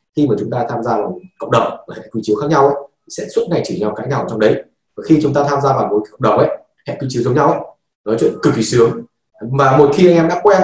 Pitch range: 140-185 Hz